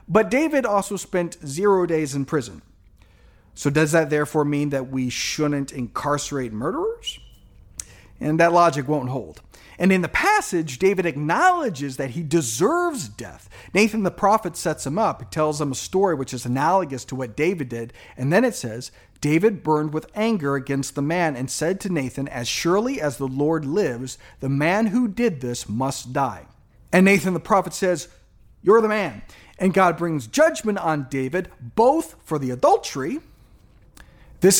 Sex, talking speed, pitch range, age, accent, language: male, 170 wpm, 130-185 Hz, 40-59, American, English